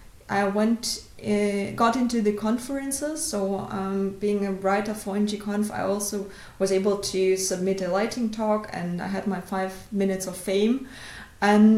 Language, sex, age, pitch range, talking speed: English, female, 20-39, 190-225 Hz, 165 wpm